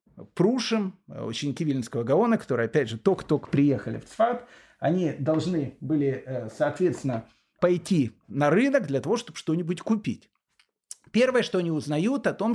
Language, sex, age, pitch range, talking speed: Russian, male, 30-49, 140-205 Hz, 140 wpm